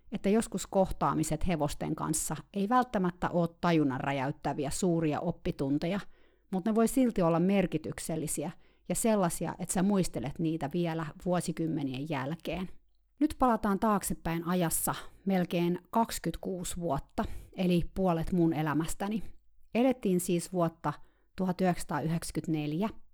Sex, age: female, 30-49